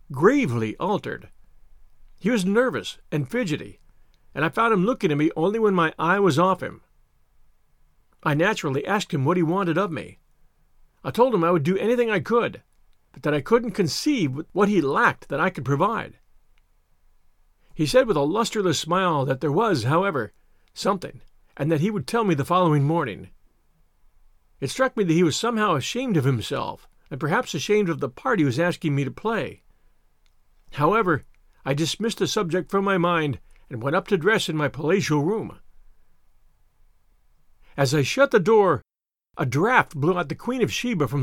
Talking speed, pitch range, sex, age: 180 wpm, 145-210 Hz, male, 50-69